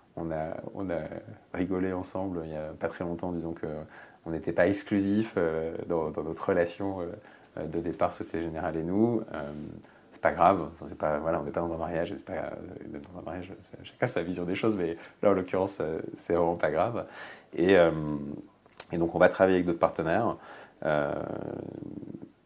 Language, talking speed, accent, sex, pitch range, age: French, 170 wpm, French, male, 80-95 Hz, 30-49